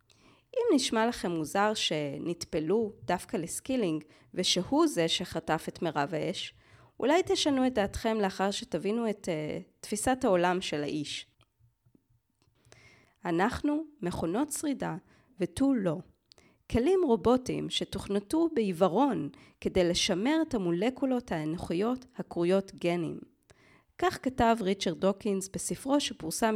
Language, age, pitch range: Hebrew, 30-49, 170-255 Hz